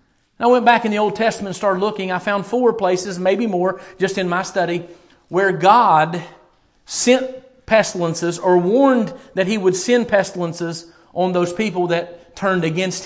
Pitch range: 175-210 Hz